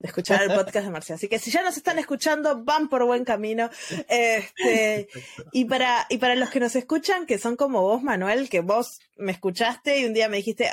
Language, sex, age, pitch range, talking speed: Spanish, female, 20-39, 190-255 Hz, 225 wpm